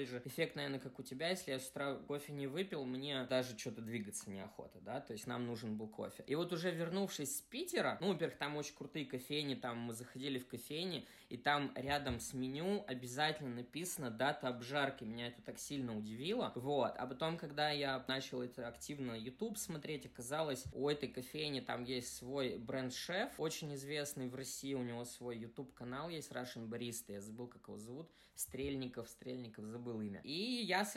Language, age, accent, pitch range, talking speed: Russian, 20-39, native, 120-150 Hz, 190 wpm